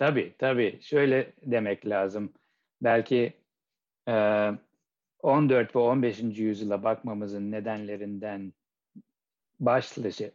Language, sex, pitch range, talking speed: Turkish, male, 110-135 Hz, 75 wpm